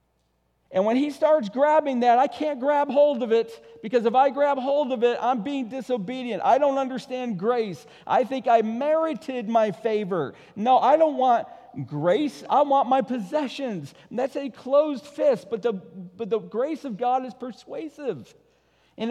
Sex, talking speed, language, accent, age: male, 175 wpm, English, American, 50-69